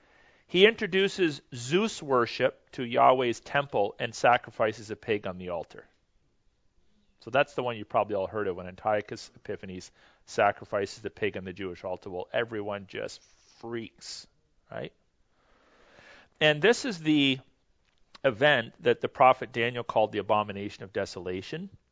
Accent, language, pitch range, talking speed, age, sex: American, English, 105-145 Hz, 140 wpm, 40-59, male